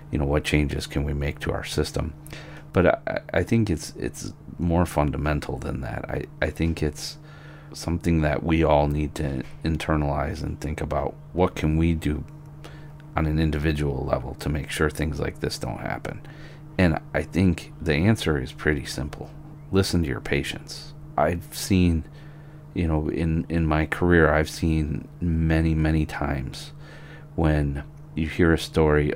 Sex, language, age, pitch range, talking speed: male, English, 40-59, 75-115 Hz, 165 wpm